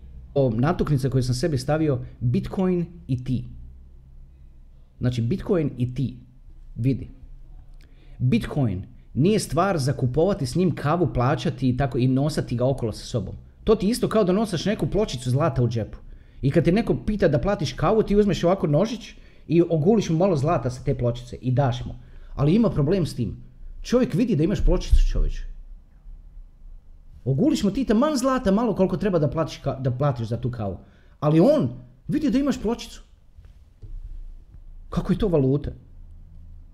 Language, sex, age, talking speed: Croatian, male, 30-49, 165 wpm